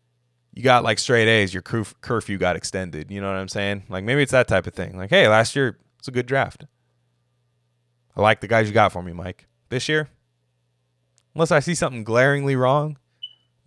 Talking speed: 210 wpm